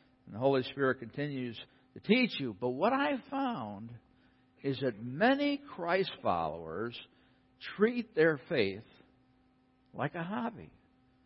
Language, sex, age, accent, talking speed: English, male, 60-79, American, 125 wpm